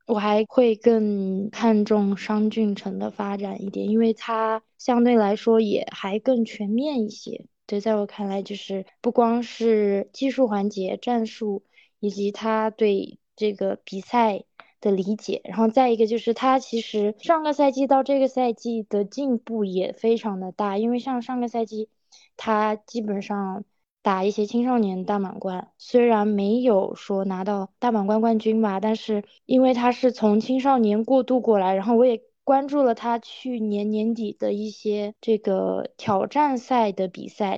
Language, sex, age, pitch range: Chinese, female, 20-39, 205-240 Hz